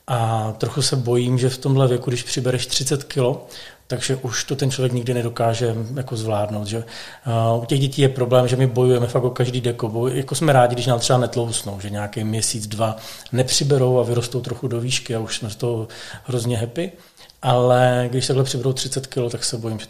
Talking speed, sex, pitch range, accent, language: 200 wpm, male, 115-135 Hz, native, Czech